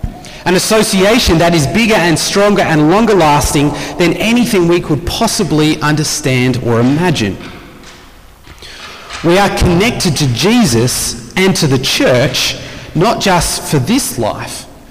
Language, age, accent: English, 30-49, Australian